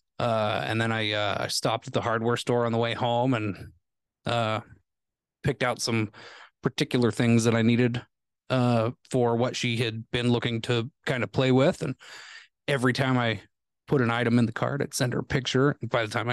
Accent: American